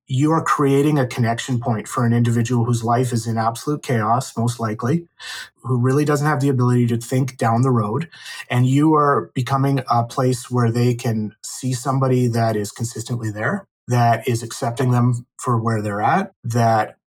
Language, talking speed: English, 185 wpm